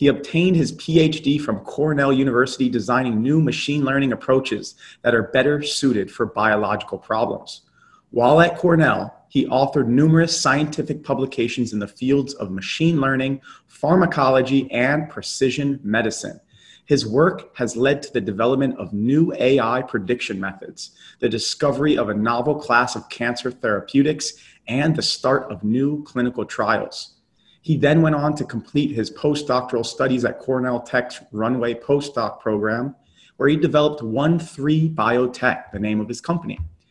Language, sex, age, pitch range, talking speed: English, male, 30-49, 120-150 Hz, 145 wpm